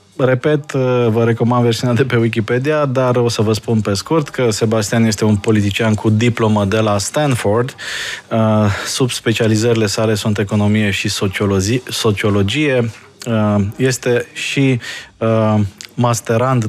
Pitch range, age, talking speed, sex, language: 100-115 Hz, 20-39, 120 wpm, male, Romanian